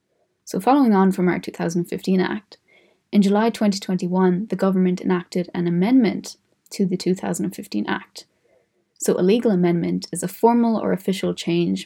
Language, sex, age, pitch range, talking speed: English, female, 20-39, 175-205 Hz, 145 wpm